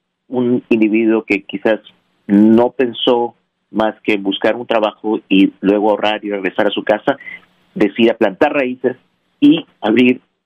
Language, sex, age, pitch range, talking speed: Spanish, male, 40-59, 100-115 Hz, 140 wpm